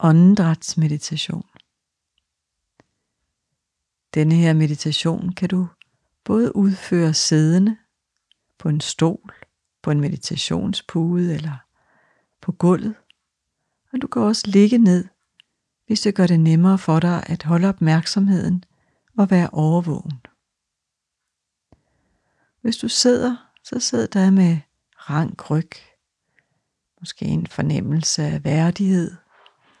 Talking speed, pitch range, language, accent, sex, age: 105 wpm, 160-195 Hz, Danish, native, female, 60-79